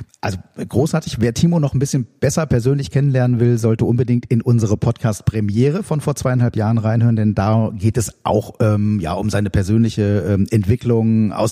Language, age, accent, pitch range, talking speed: German, 40-59, German, 105-135 Hz, 175 wpm